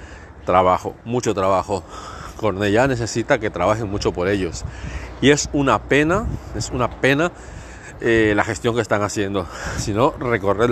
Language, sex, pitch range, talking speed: Spanish, male, 100-120 Hz, 145 wpm